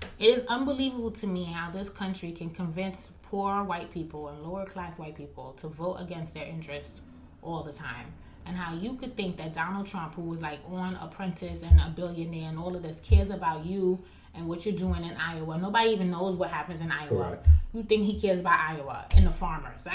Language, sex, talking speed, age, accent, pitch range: English, female, 215 wpm, 20-39, American, 165-210 Hz